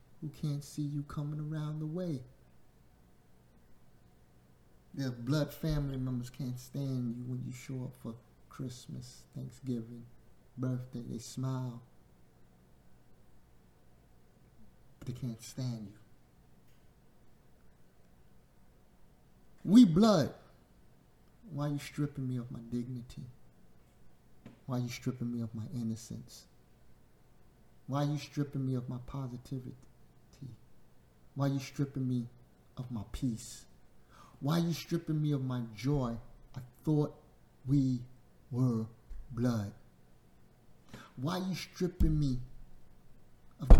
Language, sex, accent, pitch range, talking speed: English, male, American, 110-145 Hz, 115 wpm